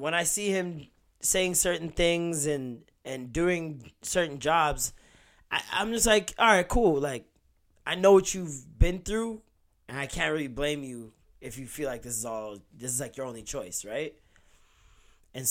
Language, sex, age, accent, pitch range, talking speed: English, male, 20-39, American, 120-160 Hz, 180 wpm